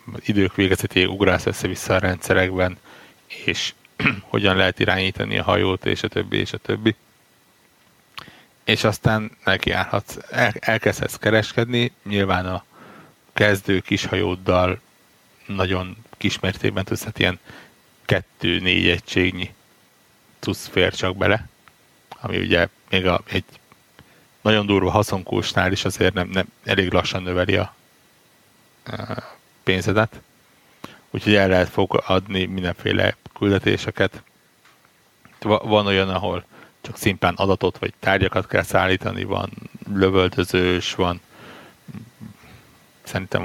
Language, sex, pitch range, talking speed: Hungarian, male, 90-105 Hz, 105 wpm